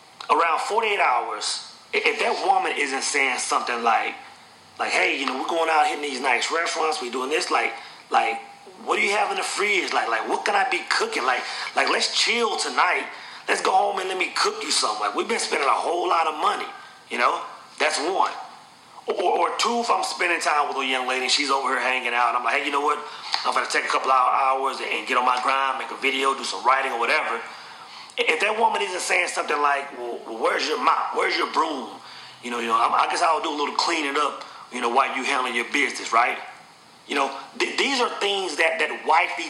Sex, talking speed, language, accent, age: male, 235 wpm, English, American, 30-49